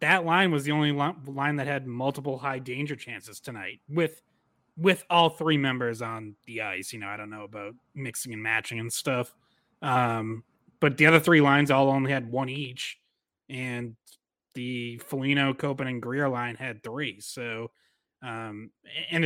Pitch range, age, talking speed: 120-145 Hz, 20-39, 170 wpm